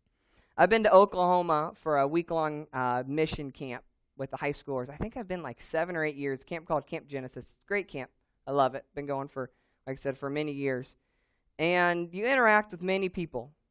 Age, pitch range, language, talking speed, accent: 20-39, 130-165 Hz, English, 200 wpm, American